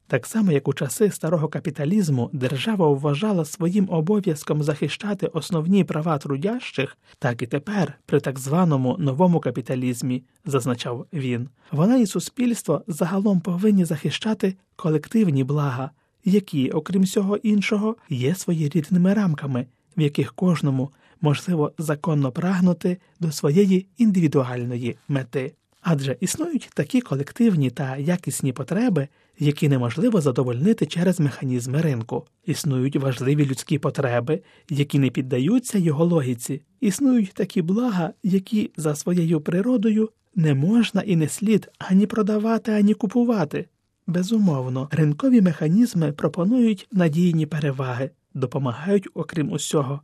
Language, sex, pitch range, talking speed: Ukrainian, male, 140-195 Hz, 120 wpm